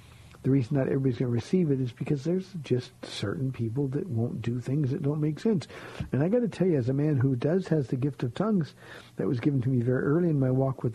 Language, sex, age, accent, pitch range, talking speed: English, male, 50-69, American, 125-155 Hz, 270 wpm